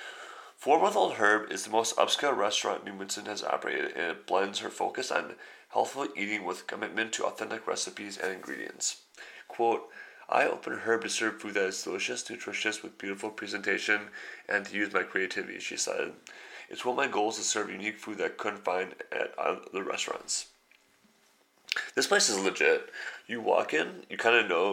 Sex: male